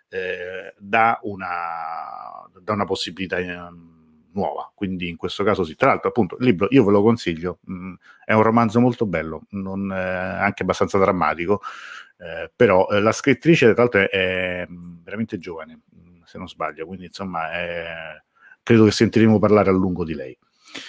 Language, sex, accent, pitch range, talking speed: Italian, male, native, 90-120 Hz, 145 wpm